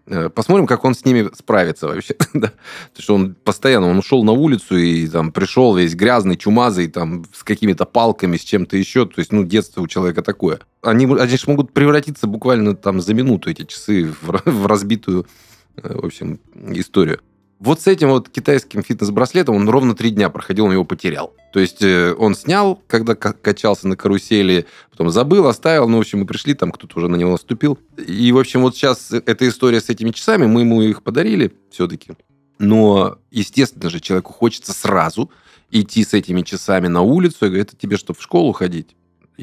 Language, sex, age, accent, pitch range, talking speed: Russian, male, 20-39, native, 95-125 Hz, 190 wpm